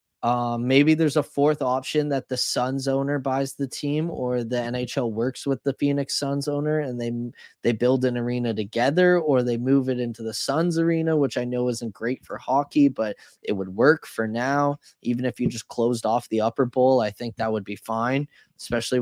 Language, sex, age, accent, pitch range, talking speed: English, male, 20-39, American, 120-145 Hz, 210 wpm